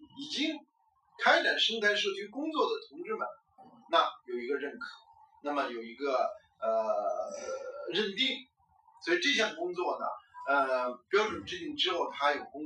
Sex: male